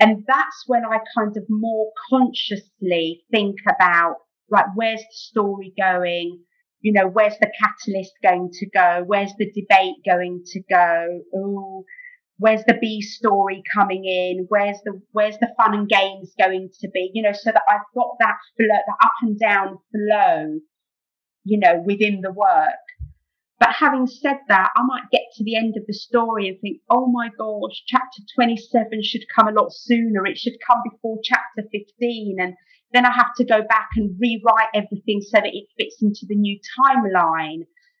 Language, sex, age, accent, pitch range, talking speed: English, female, 40-59, British, 195-245 Hz, 175 wpm